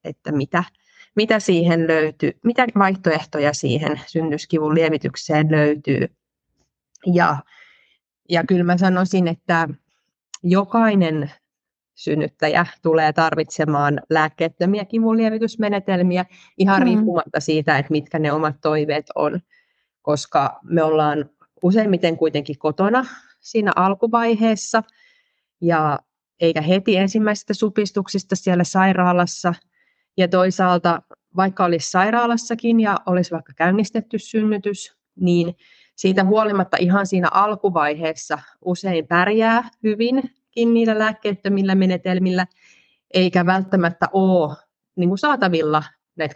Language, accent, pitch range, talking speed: Finnish, native, 155-200 Hz, 95 wpm